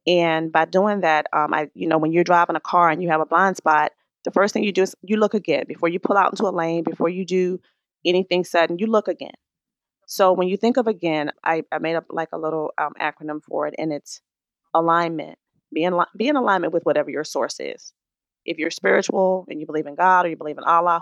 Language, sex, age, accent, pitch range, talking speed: English, female, 30-49, American, 155-190 Hz, 245 wpm